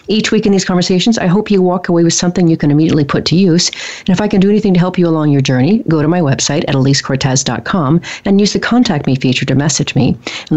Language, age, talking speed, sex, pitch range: English, 40-59, 260 wpm, female, 145-175 Hz